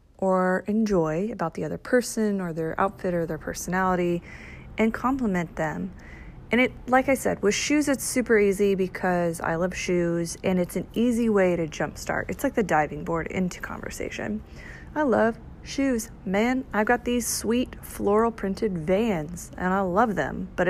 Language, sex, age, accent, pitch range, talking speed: English, female, 30-49, American, 170-230 Hz, 170 wpm